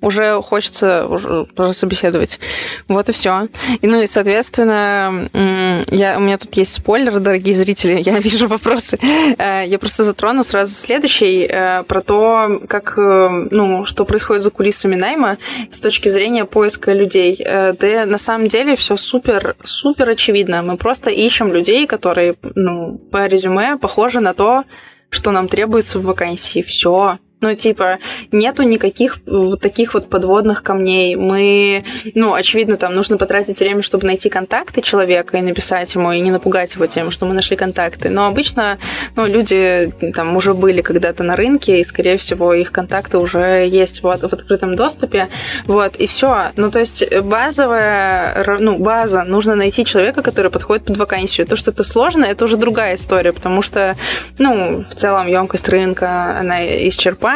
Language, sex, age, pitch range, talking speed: Russian, female, 20-39, 185-220 Hz, 160 wpm